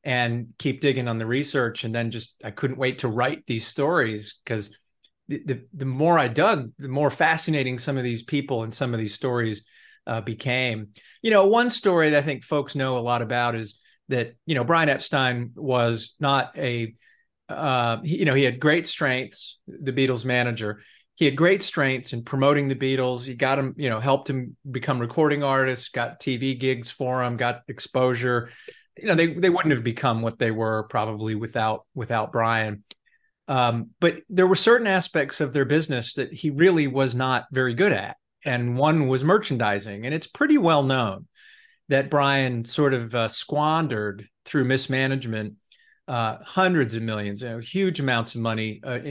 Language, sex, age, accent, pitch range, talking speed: English, male, 30-49, American, 120-150 Hz, 185 wpm